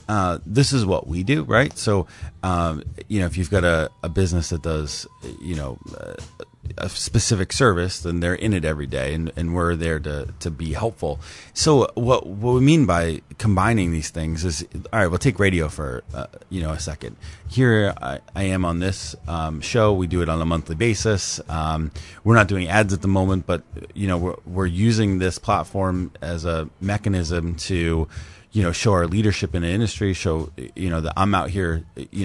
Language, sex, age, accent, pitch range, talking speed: English, male, 30-49, American, 85-105 Hz, 205 wpm